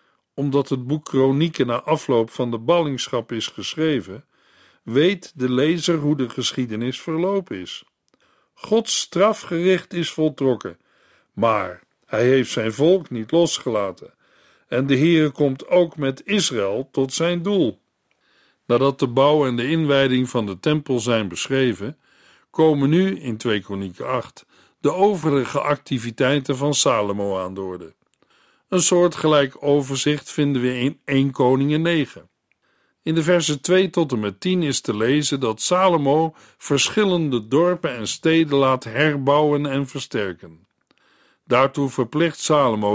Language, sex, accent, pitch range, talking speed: Dutch, male, Dutch, 125-160 Hz, 135 wpm